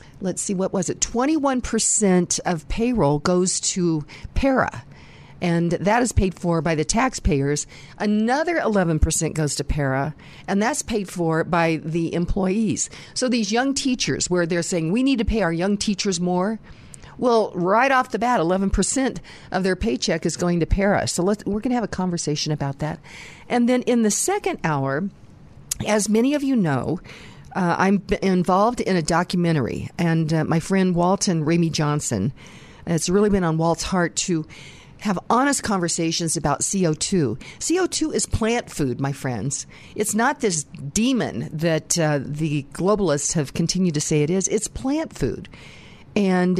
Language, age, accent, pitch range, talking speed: English, 50-69, American, 160-215 Hz, 165 wpm